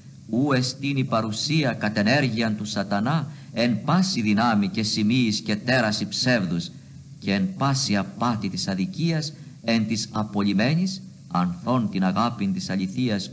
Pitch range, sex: 105-140 Hz, male